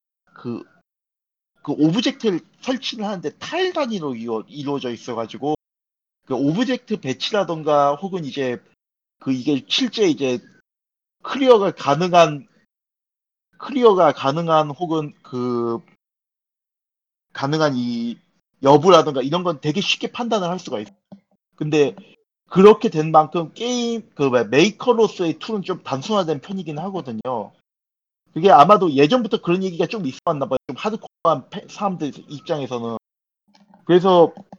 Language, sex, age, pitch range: Korean, male, 40-59, 140-200 Hz